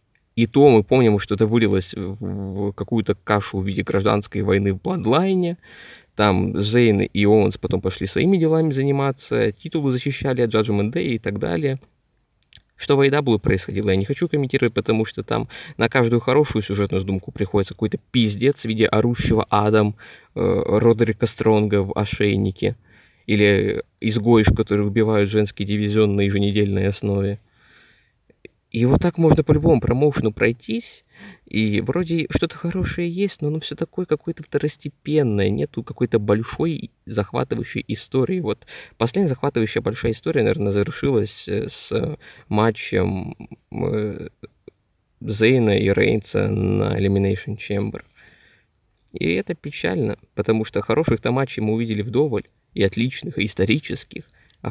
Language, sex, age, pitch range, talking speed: Russian, male, 20-39, 100-130 Hz, 135 wpm